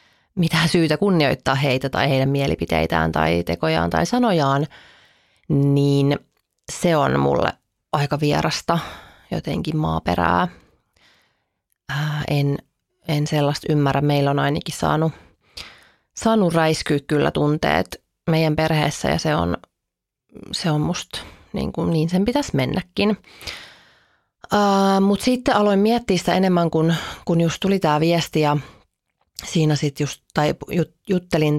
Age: 30-49